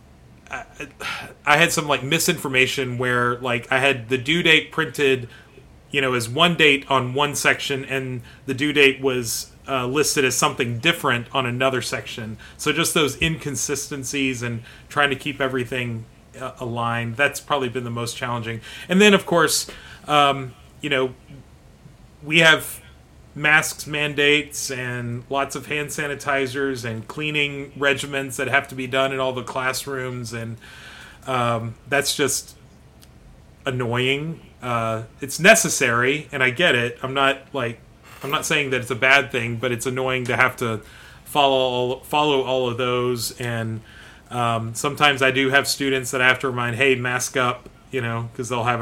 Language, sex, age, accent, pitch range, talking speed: English, male, 30-49, American, 120-140 Hz, 165 wpm